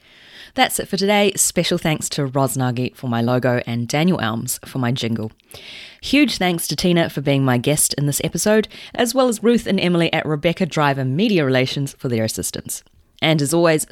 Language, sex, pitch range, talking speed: English, female, 125-210 Hz, 195 wpm